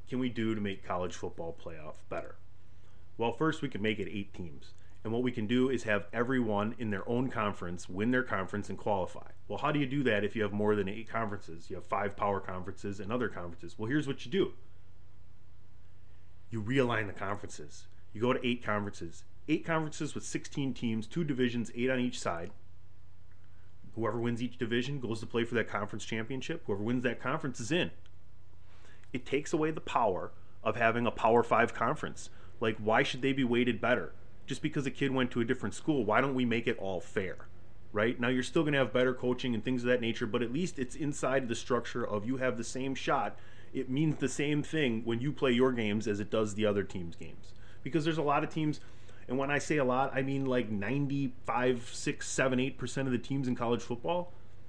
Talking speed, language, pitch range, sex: 220 wpm, English, 100-130 Hz, male